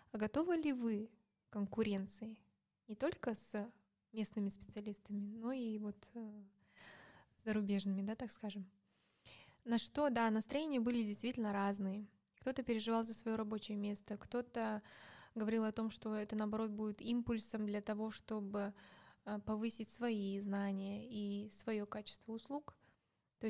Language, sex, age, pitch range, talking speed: Russian, female, 20-39, 210-230 Hz, 135 wpm